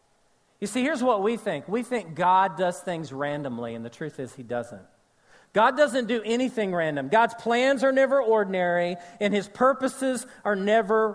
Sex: male